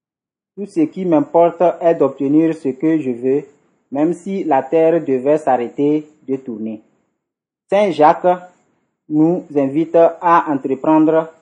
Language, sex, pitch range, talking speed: French, male, 140-170 Hz, 125 wpm